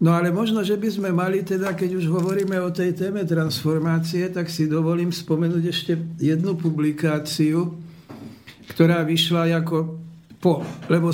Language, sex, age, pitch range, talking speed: Slovak, male, 60-79, 150-165 Hz, 145 wpm